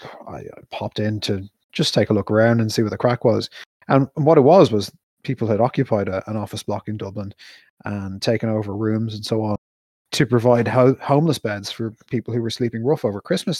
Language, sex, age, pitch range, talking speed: English, male, 20-39, 110-135 Hz, 205 wpm